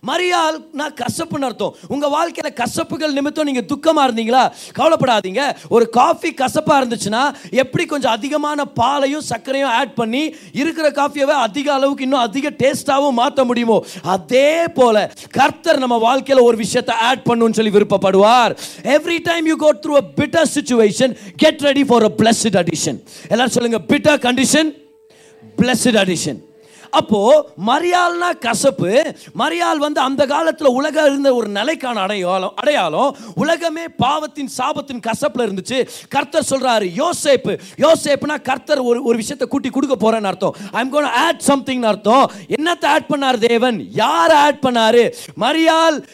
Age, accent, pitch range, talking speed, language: 30-49, native, 235-300 Hz, 30 wpm, Tamil